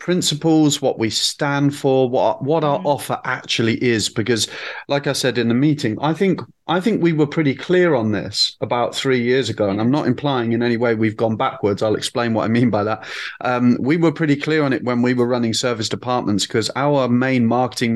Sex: male